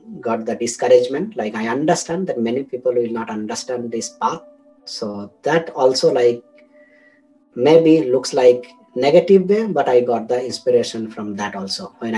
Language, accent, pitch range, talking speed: English, Indian, 125-190 Hz, 160 wpm